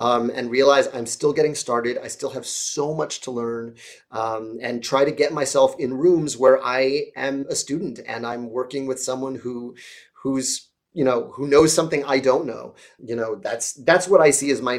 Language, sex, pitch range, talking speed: English, male, 120-140 Hz, 205 wpm